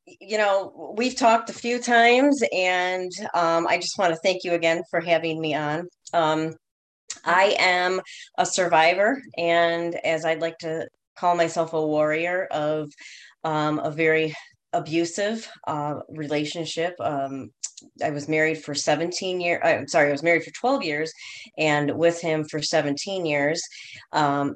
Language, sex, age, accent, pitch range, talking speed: English, female, 30-49, American, 145-170 Hz, 155 wpm